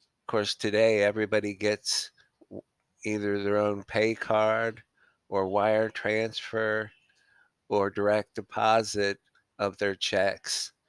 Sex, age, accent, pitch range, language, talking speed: male, 50-69, American, 100-110 Hz, English, 100 wpm